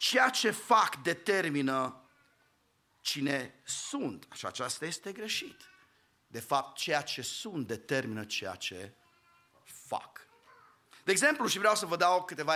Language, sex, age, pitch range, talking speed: English, male, 40-59, 165-240 Hz, 130 wpm